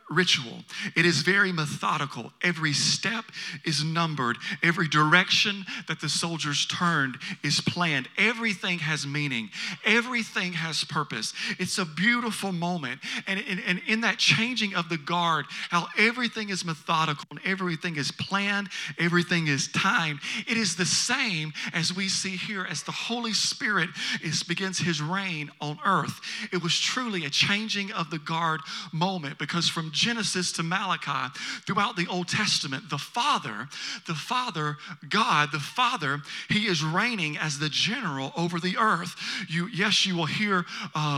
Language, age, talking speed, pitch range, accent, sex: English, 40-59, 155 wpm, 160-195 Hz, American, male